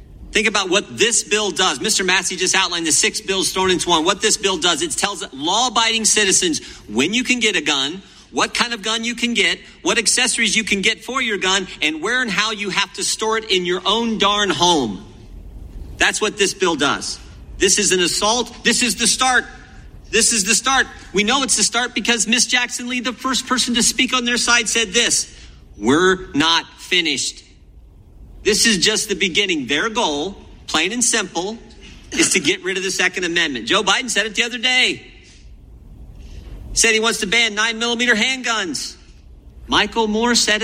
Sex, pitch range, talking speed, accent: male, 185-235 Hz, 200 wpm, American